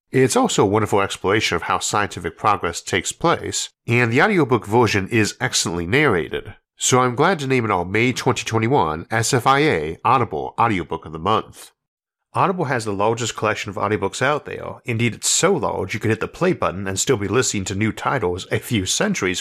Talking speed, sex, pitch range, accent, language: 190 wpm, male, 100-130 Hz, American, English